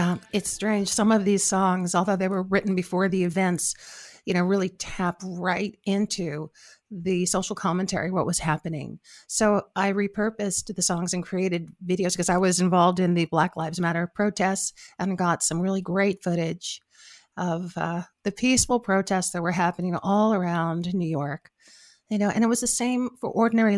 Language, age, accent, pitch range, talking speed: English, 50-69, American, 175-200 Hz, 180 wpm